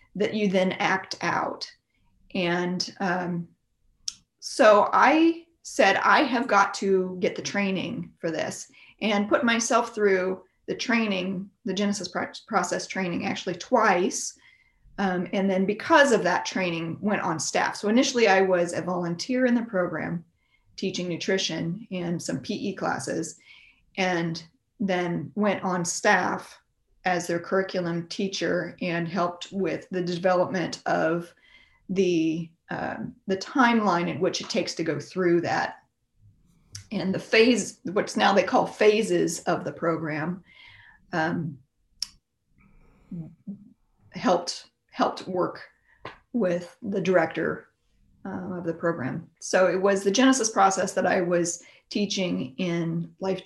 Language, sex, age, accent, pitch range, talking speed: English, female, 30-49, American, 170-205 Hz, 130 wpm